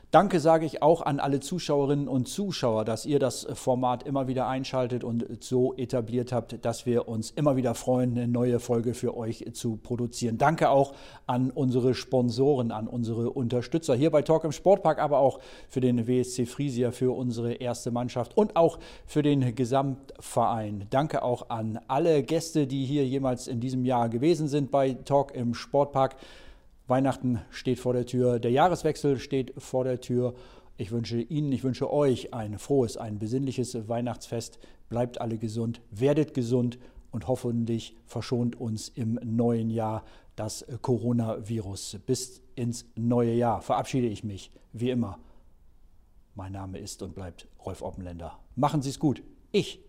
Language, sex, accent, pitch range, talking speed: German, male, German, 115-135 Hz, 160 wpm